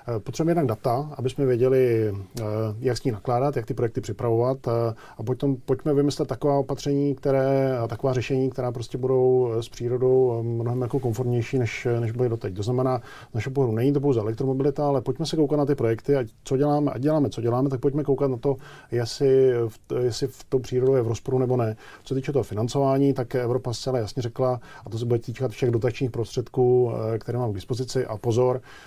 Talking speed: 200 wpm